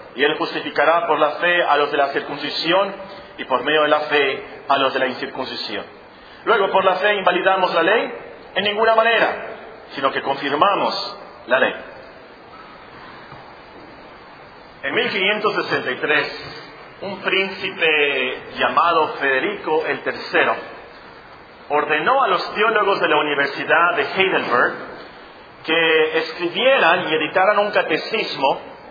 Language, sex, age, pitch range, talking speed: Spanish, male, 40-59, 160-225 Hz, 120 wpm